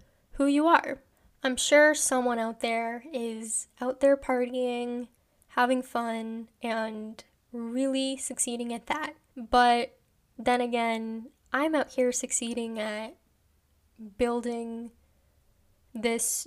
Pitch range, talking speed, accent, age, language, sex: 235-275 Hz, 105 wpm, American, 10-29, English, female